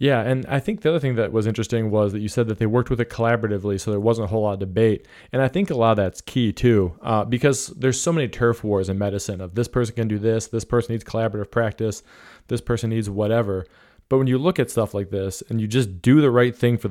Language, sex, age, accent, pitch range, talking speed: English, male, 20-39, American, 105-125 Hz, 275 wpm